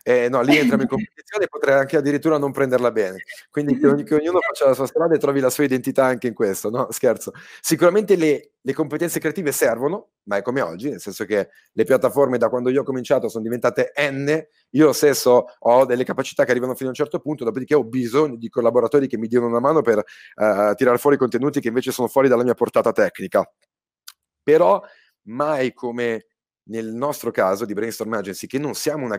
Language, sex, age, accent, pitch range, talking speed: Italian, male, 30-49, native, 110-140 Hz, 210 wpm